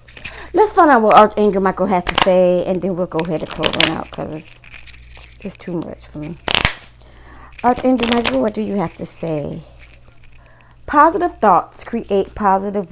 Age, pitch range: 30-49, 155-230 Hz